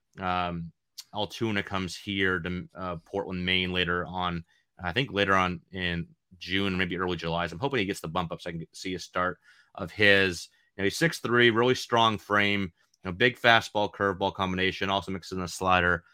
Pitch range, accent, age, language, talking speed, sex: 90-105 Hz, American, 30-49, English, 195 wpm, male